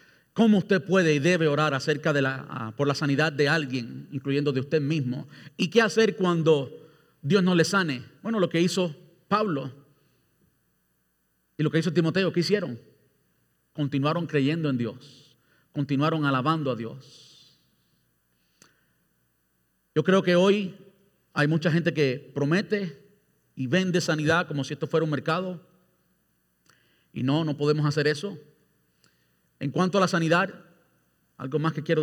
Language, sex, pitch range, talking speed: Spanish, male, 135-175 Hz, 150 wpm